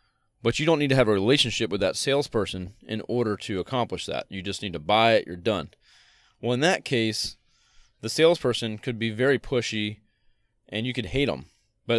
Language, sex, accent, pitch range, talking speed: English, male, American, 105-130 Hz, 200 wpm